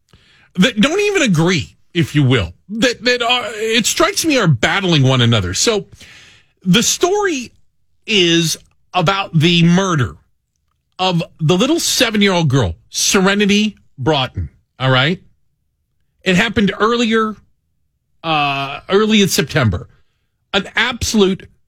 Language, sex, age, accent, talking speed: English, male, 40-59, American, 120 wpm